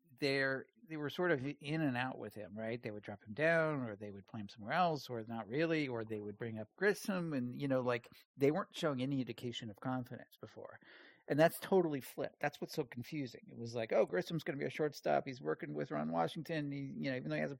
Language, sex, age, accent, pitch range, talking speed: English, male, 50-69, American, 115-150 Hz, 250 wpm